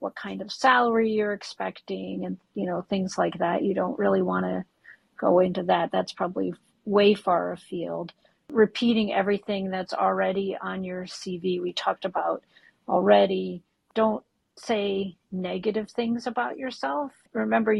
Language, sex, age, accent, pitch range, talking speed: English, female, 40-59, American, 175-215 Hz, 140 wpm